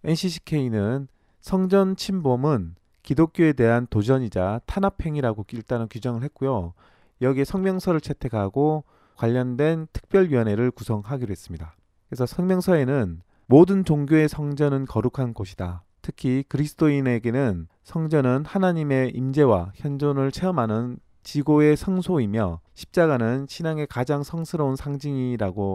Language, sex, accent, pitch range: Korean, male, native, 110-155 Hz